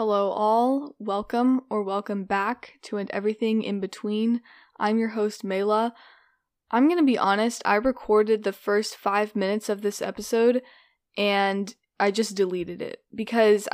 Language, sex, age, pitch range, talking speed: English, female, 10-29, 195-225 Hz, 150 wpm